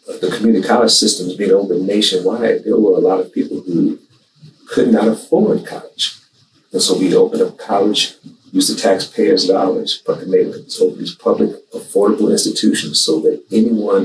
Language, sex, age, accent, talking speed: English, male, 50-69, American, 170 wpm